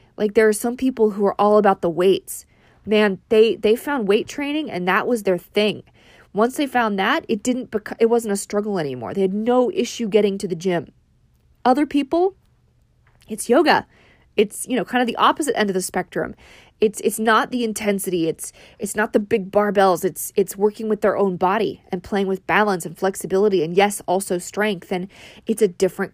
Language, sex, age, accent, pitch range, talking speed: English, female, 20-39, American, 190-230 Hz, 205 wpm